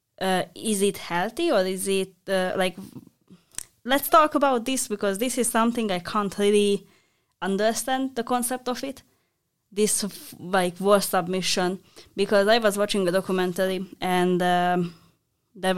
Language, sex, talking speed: English, female, 150 wpm